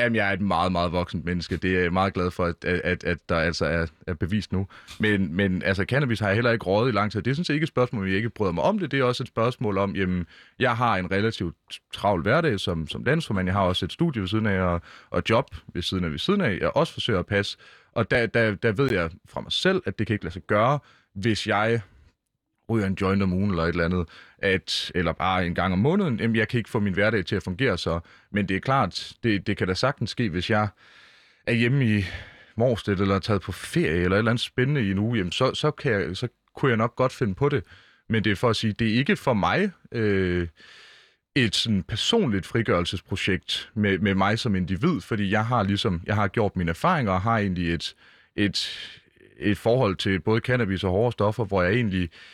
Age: 30-49